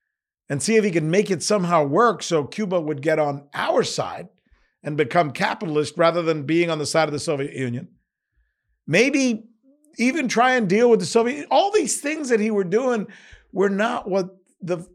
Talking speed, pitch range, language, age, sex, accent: 195 wpm, 155-215 Hz, English, 50-69, male, American